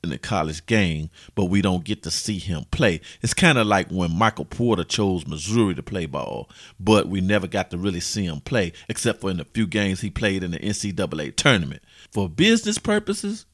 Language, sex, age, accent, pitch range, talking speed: English, male, 40-59, American, 90-120 Hz, 210 wpm